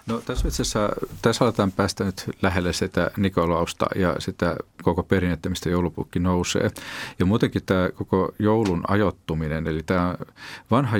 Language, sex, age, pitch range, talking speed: Finnish, male, 40-59, 80-95 Hz, 145 wpm